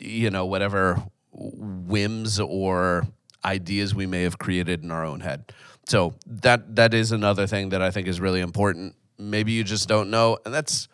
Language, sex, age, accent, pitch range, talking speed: English, male, 30-49, American, 90-110 Hz, 180 wpm